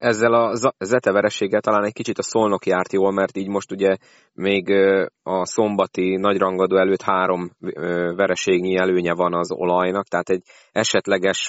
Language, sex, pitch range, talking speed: Hungarian, male, 90-100 Hz, 150 wpm